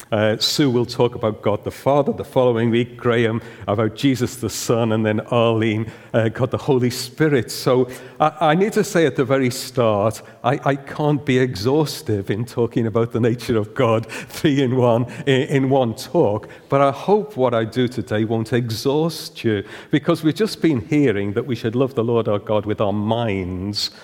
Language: English